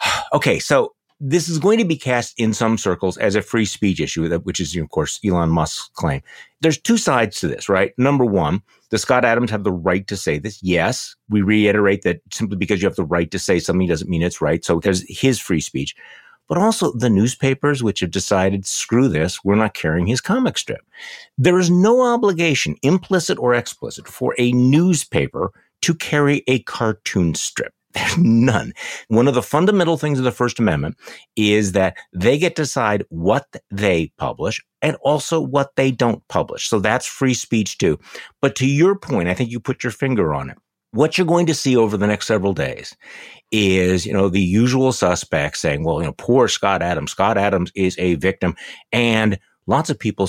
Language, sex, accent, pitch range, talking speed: English, male, American, 95-140 Hz, 200 wpm